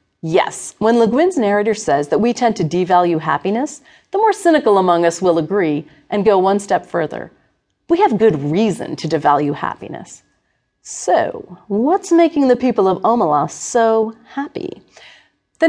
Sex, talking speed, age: female, 155 wpm, 40-59